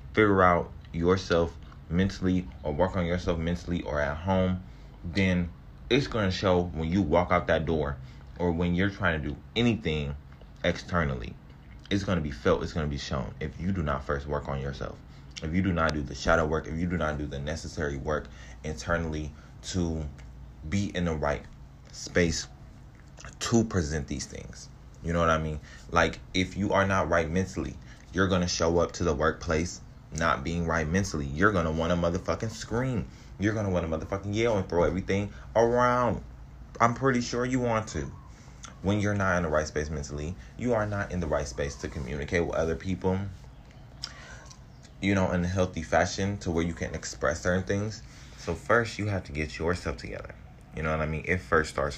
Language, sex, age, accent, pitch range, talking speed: English, male, 20-39, American, 75-95 Hz, 195 wpm